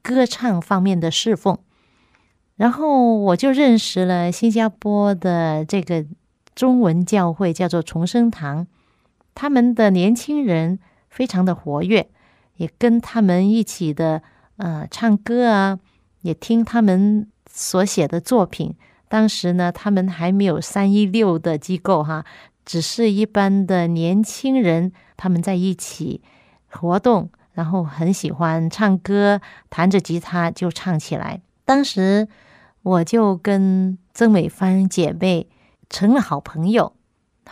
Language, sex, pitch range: Chinese, female, 170-220 Hz